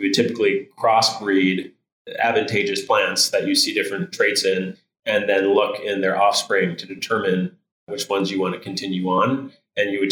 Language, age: English, 30-49